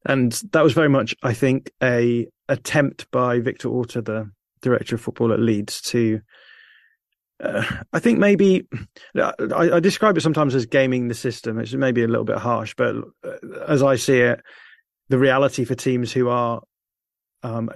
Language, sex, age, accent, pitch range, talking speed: English, male, 30-49, British, 115-130 Hz, 170 wpm